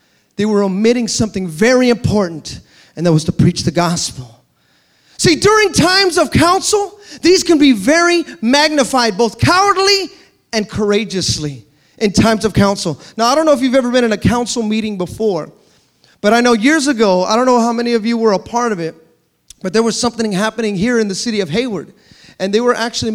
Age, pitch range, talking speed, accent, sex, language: 30-49, 180-235 Hz, 195 wpm, American, male, English